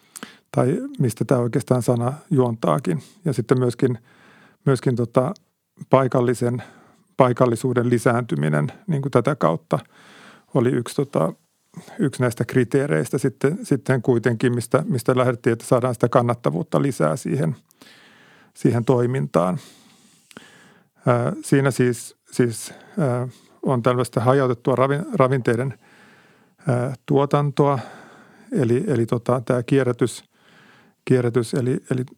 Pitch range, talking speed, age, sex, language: 125-145 Hz, 90 wpm, 50-69, male, Finnish